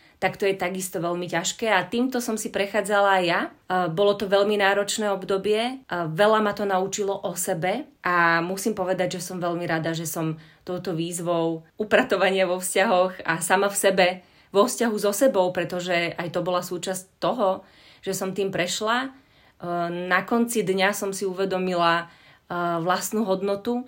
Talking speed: 160 wpm